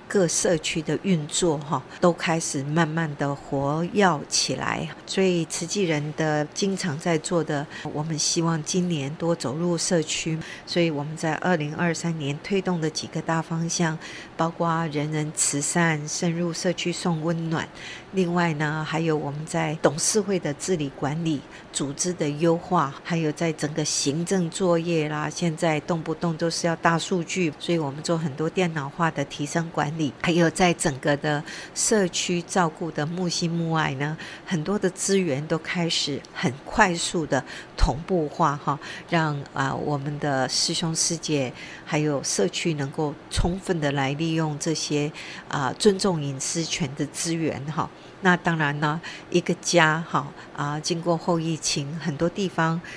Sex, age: female, 50-69